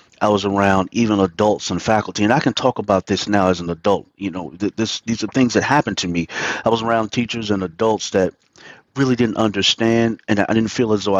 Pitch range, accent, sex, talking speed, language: 100-120 Hz, American, male, 230 wpm, English